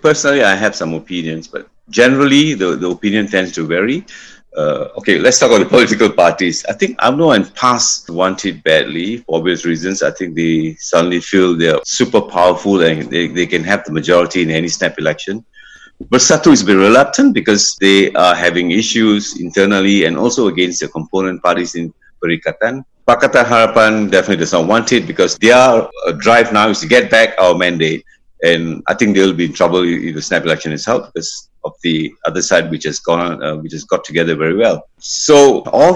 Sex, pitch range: male, 90-130 Hz